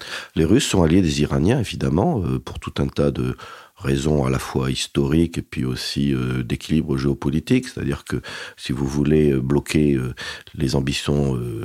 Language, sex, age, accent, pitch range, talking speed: French, male, 40-59, French, 65-80 Hz, 155 wpm